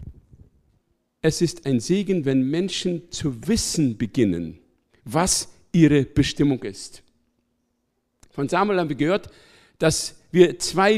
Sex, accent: male, German